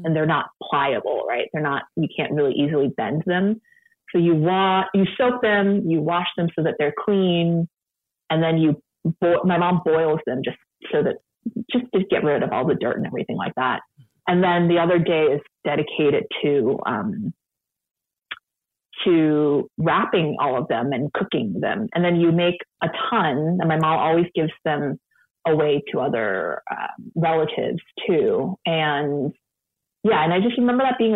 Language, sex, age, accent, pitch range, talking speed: English, female, 30-49, American, 160-190 Hz, 175 wpm